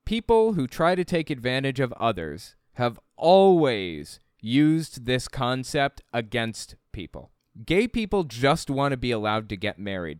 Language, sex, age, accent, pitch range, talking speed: English, male, 20-39, American, 115-160 Hz, 145 wpm